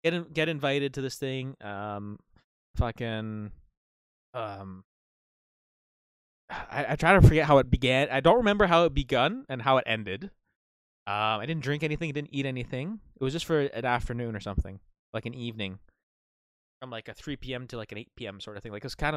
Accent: American